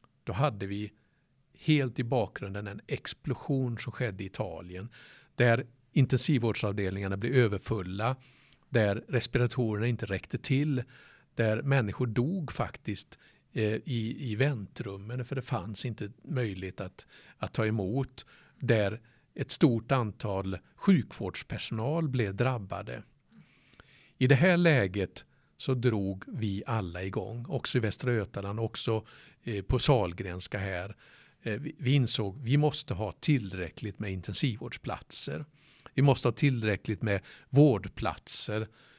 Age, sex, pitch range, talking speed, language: 50-69, male, 105-135 Hz, 120 wpm, Swedish